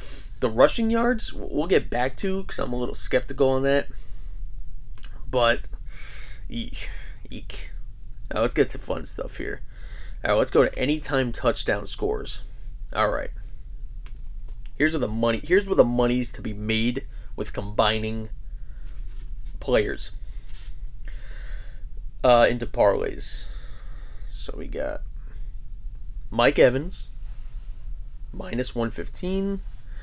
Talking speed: 120 wpm